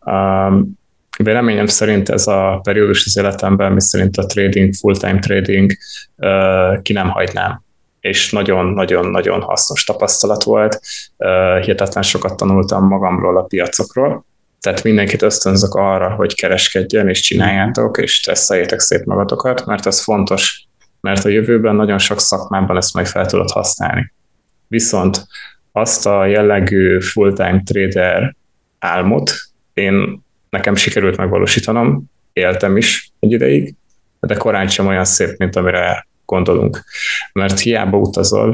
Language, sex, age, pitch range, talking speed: Hungarian, male, 20-39, 95-105 Hz, 125 wpm